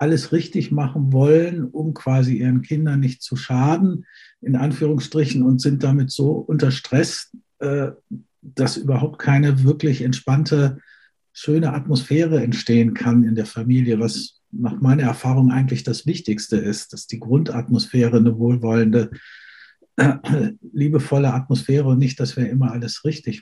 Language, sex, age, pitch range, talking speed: German, male, 60-79, 130-155 Hz, 135 wpm